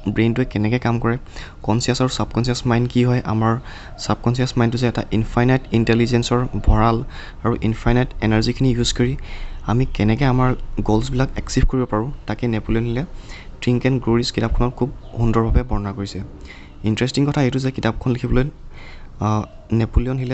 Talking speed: 125 wpm